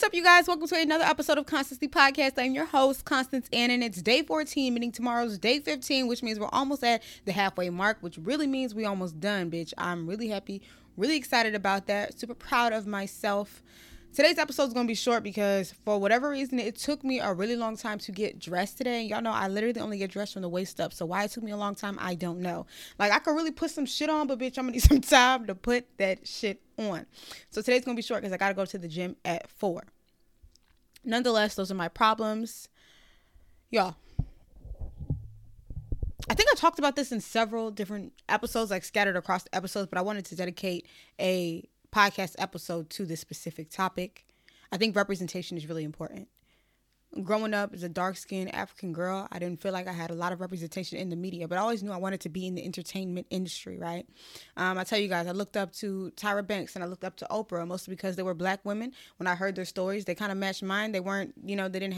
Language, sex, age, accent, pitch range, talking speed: English, female, 20-39, American, 180-235 Hz, 235 wpm